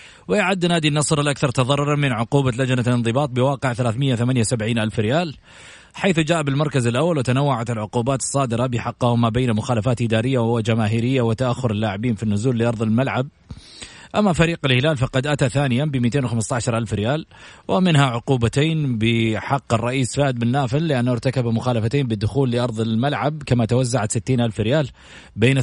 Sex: male